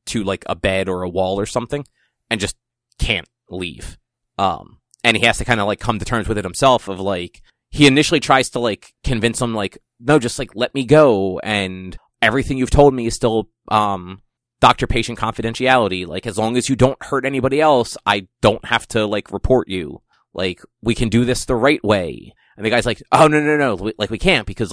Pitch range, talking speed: 105-135 Hz, 215 wpm